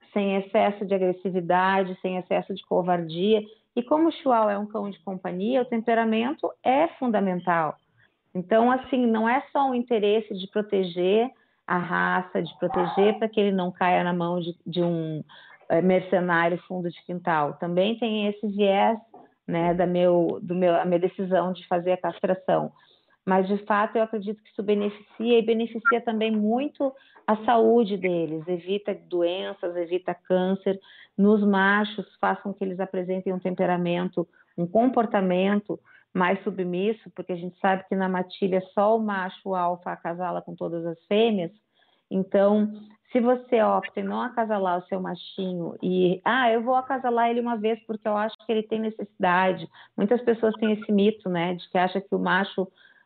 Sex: female